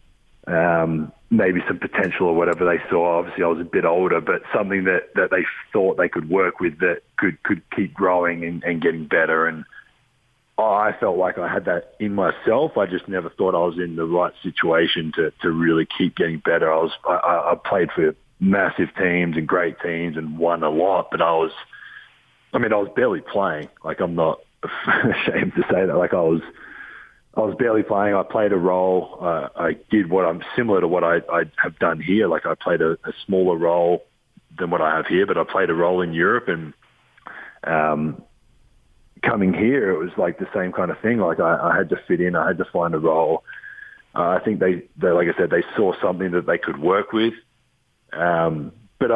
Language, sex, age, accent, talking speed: English, male, 40-59, Australian, 215 wpm